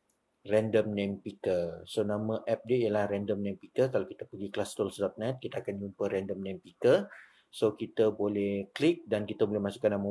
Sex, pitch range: male, 100-115 Hz